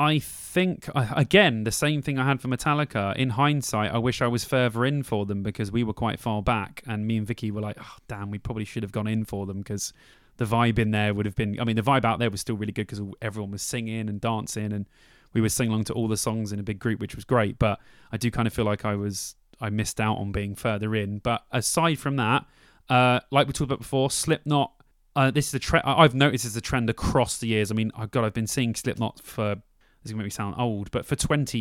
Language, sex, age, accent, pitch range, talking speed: English, male, 20-39, British, 110-130 Hz, 270 wpm